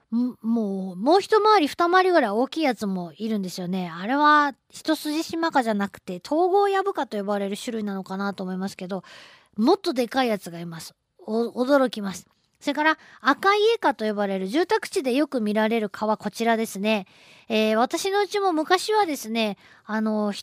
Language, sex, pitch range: Japanese, female, 205-310 Hz